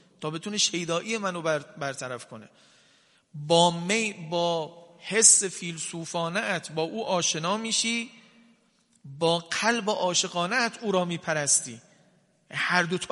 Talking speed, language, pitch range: 115 wpm, Persian, 155-195 Hz